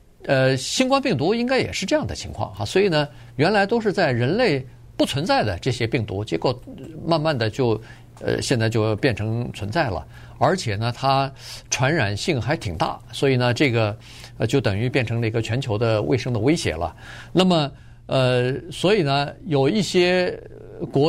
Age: 50-69